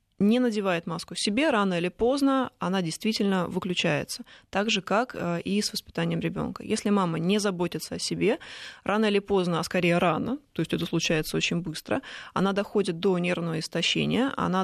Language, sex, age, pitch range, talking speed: Russian, female, 20-39, 175-220 Hz, 170 wpm